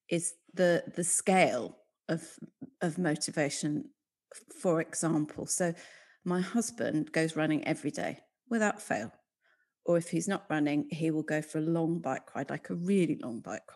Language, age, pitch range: English, 40-59, 165-205 Hz